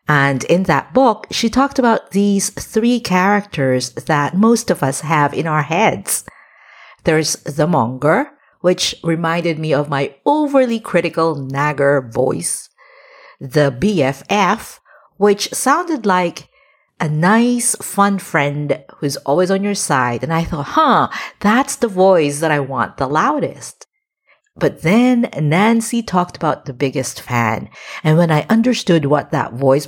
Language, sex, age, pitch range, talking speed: English, female, 50-69, 145-220 Hz, 145 wpm